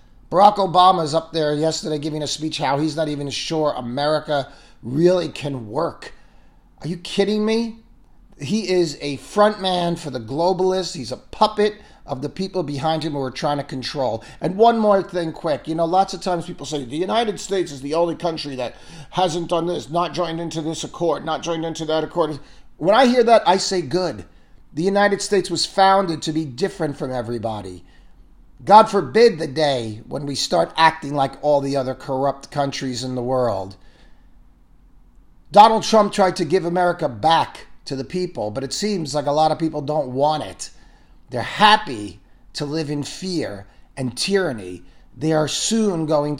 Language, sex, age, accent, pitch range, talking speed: English, male, 40-59, American, 140-185 Hz, 185 wpm